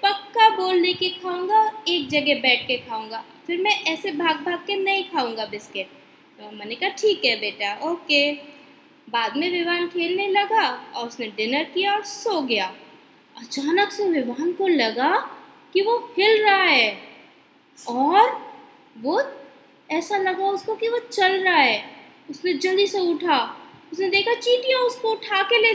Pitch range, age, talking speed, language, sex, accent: 300-425 Hz, 20-39, 155 wpm, Hindi, female, native